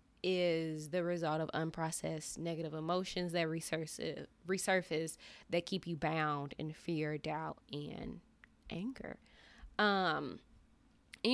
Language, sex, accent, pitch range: English, female, American, 160-195 Hz